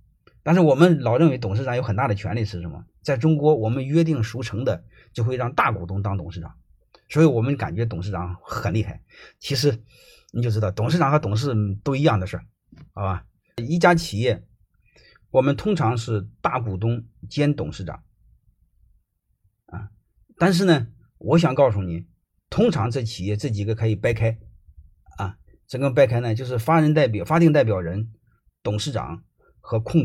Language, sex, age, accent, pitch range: Chinese, male, 30-49, native, 100-140 Hz